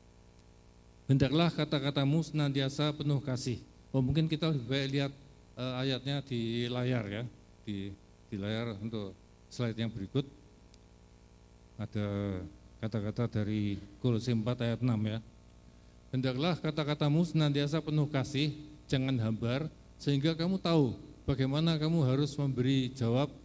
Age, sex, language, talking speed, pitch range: 50-69, male, Indonesian, 115 wpm, 110-140 Hz